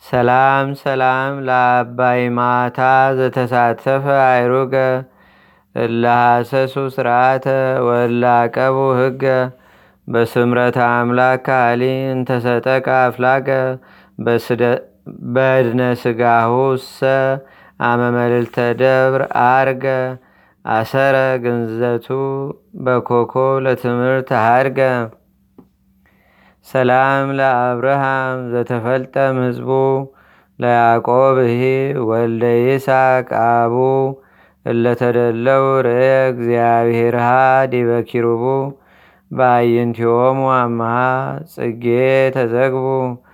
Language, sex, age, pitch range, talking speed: Amharic, male, 30-49, 120-135 Hz, 60 wpm